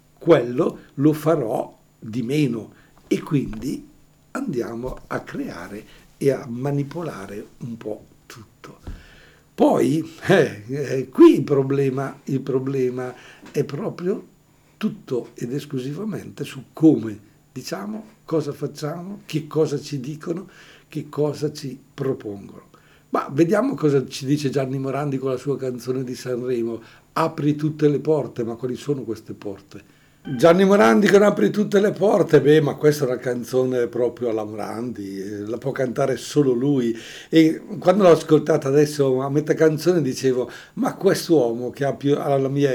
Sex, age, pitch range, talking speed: male, 60-79, 125-155 Hz, 140 wpm